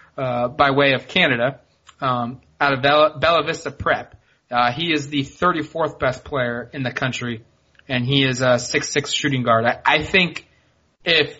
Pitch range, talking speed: 130-150 Hz, 175 wpm